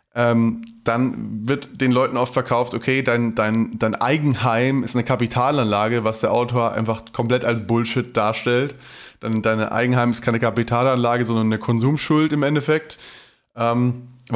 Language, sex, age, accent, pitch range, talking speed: German, male, 20-39, German, 115-125 Hz, 145 wpm